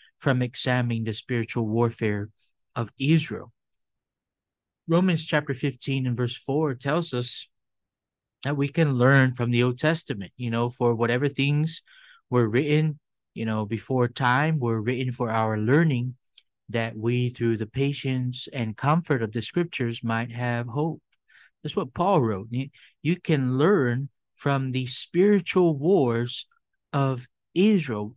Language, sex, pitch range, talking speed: English, male, 120-150 Hz, 140 wpm